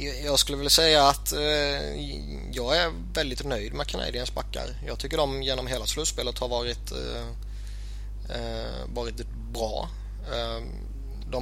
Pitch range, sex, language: 105-125 Hz, male, Swedish